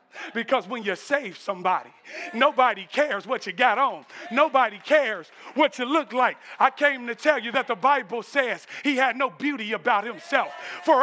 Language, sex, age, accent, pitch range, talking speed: English, male, 40-59, American, 255-320 Hz, 180 wpm